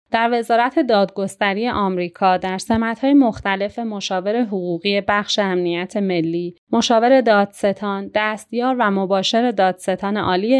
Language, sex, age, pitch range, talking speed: Persian, female, 30-49, 185-235 Hz, 110 wpm